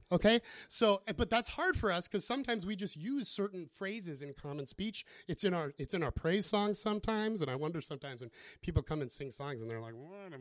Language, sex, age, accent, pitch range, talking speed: English, male, 30-49, American, 125-195 Hz, 230 wpm